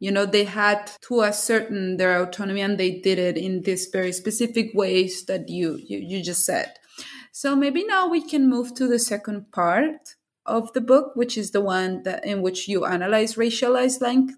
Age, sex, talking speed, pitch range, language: 20-39, female, 195 wpm, 195-255 Hz, English